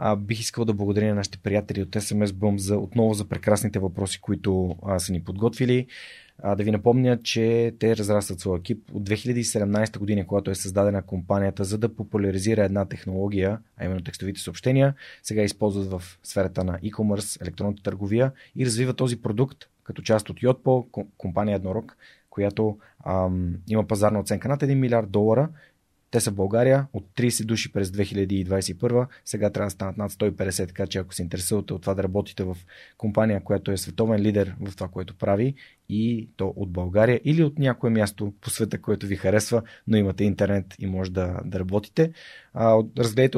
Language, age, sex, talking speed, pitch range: Bulgarian, 30-49, male, 180 wpm, 95-115 Hz